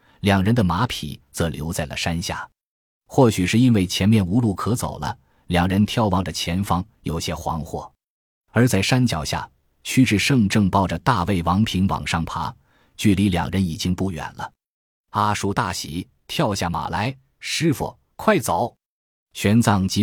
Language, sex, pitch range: Chinese, male, 85-115 Hz